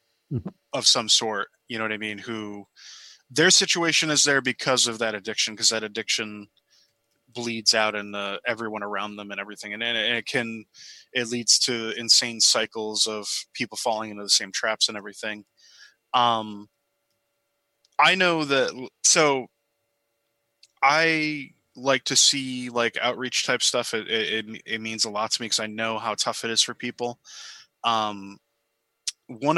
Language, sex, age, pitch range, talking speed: English, male, 20-39, 110-125 Hz, 160 wpm